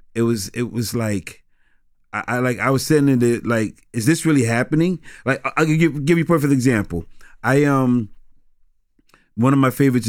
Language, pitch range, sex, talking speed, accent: English, 105-135 Hz, male, 195 wpm, American